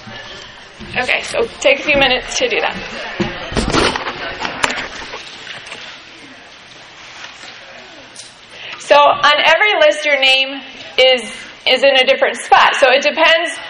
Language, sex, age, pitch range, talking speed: English, female, 30-49, 230-280 Hz, 105 wpm